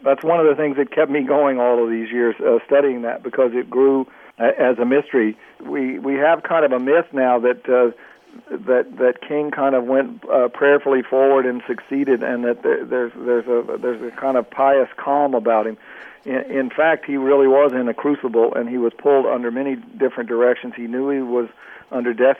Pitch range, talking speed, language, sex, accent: 120-145 Hz, 215 wpm, English, male, American